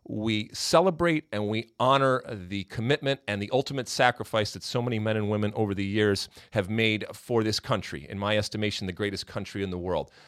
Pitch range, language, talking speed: 100-130 Hz, English, 200 wpm